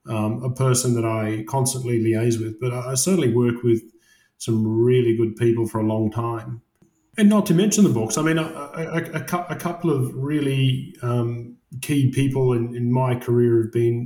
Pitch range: 115-130 Hz